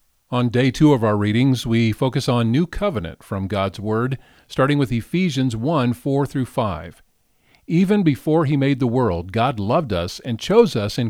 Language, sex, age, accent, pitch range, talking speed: English, male, 50-69, American, 110-145 Hz, 175 wpm